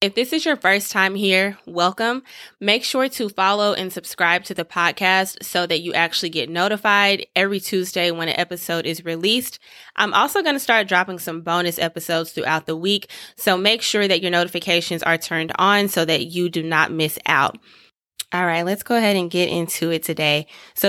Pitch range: 165-195 Hz